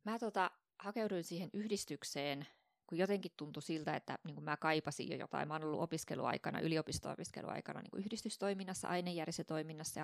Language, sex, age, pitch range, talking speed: Finnish, female, 20-39, 150-190 Hz, 130 wpm